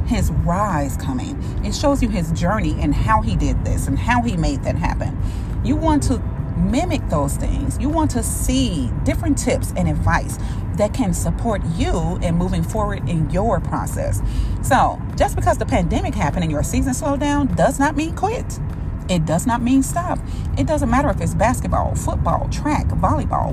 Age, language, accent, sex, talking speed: 30-49, English, American, female, 185 wpm